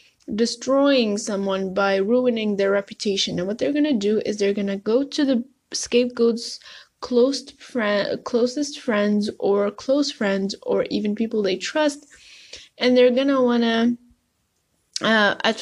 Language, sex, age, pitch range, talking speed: English, female, 10-29, 200-245 Hz, 155 wpm